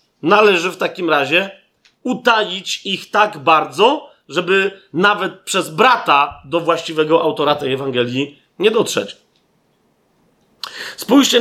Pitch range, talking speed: 150-195 Hz, 105 wpm